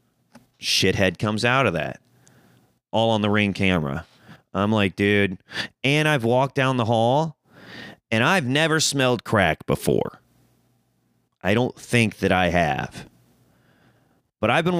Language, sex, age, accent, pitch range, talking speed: English, male, 30-49, American, 95-140 Hz, 140 wpm